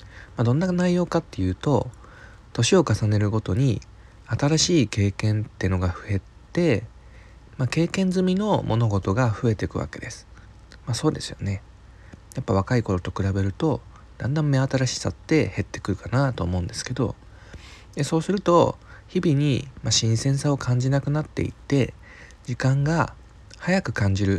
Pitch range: 100-140 Hz